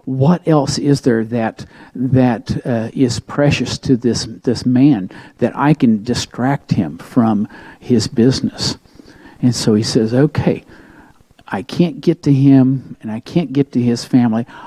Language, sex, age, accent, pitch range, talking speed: English, male, 50-69, American, 125-150 Hz, 155 wpm